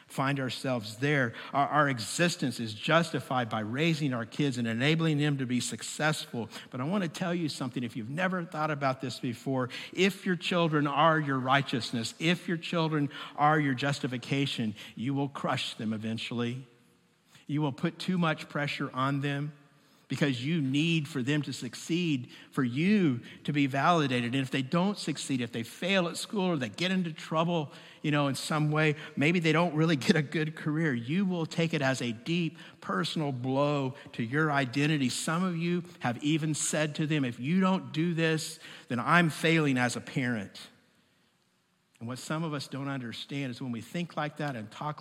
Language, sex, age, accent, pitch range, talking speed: English, male, 50-69, American, 130-160 Hz, 190 wpm